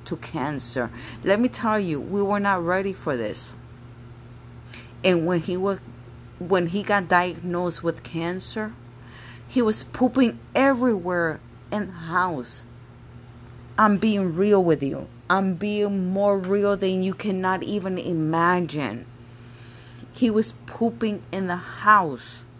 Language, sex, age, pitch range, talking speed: English, female, 30-49, 120-195 Hz, 130 wpm